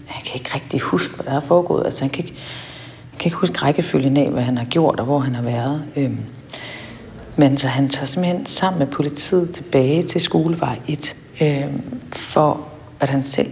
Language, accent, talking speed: Danish, native, 190 wpm